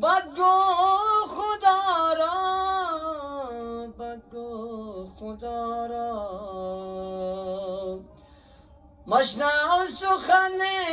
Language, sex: Persian, female